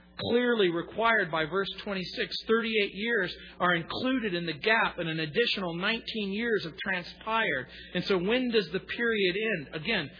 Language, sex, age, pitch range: English, male, 40-59, 175-225 Hz